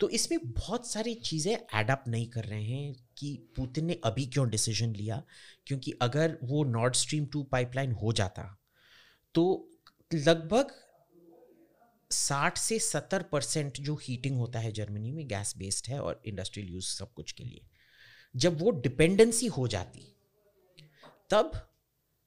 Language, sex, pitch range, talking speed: Hindi, male, 120-170 Hz, 145 wpm